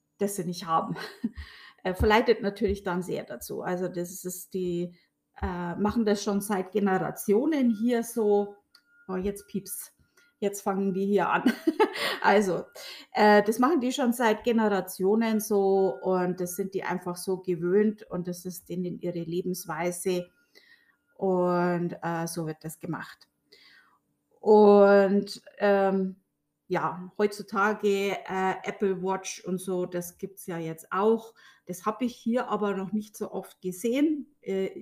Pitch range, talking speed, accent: 185-225 Hz, 145 wpm, German